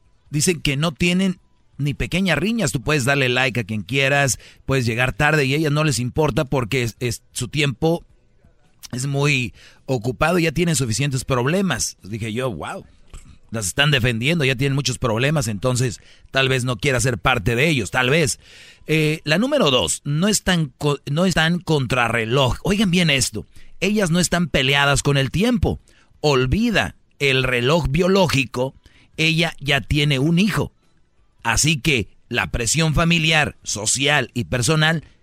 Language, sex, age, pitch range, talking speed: Spanish, male, 40-59, 125-160 Hz, 160 wpm